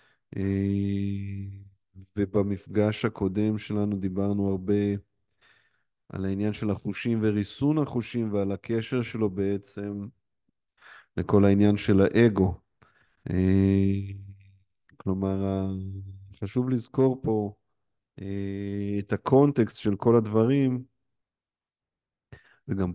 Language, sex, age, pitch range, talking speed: Hebrew, male, 20-39, 95-110 Hz, 75 wpm